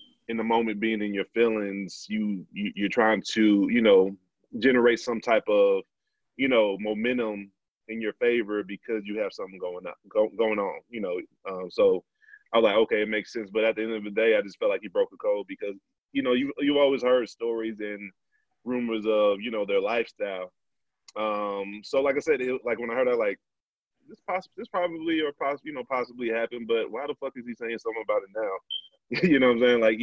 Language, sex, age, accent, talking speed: English, male, 20-39, American, 225 wpm